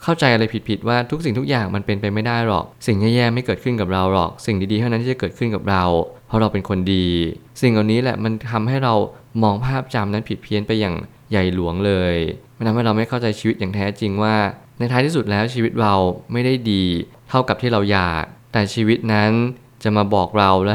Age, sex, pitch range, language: 20-39, male, 100-120 Hz, Thai